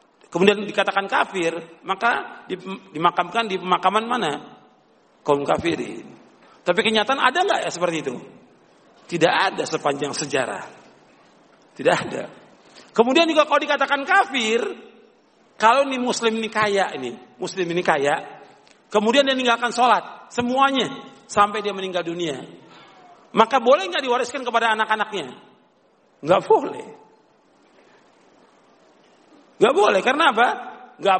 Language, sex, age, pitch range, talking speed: Indonesian, male, 50-69, 215-285 Hz, 115 wpm